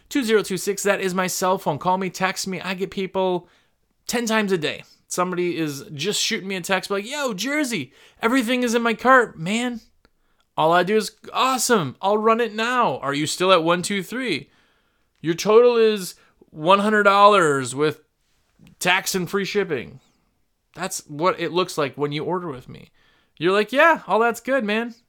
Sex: male